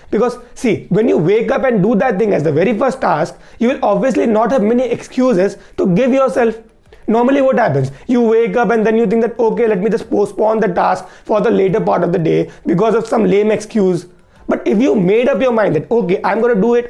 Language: Hindi